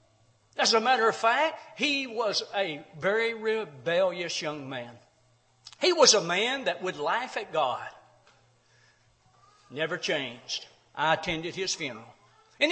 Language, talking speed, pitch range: English, 130 wpm, 175-280 Hz